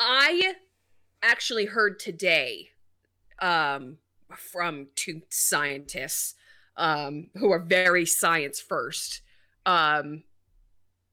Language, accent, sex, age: English, American, female, 30-49